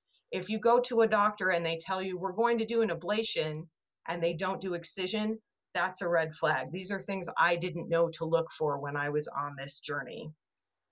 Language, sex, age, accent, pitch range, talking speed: English, female, 30-49, American, 170-215 Hz, 220 wpm